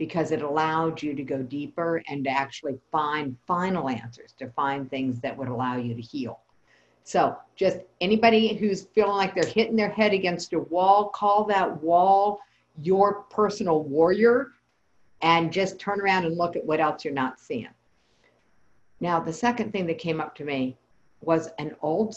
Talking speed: 175 wpm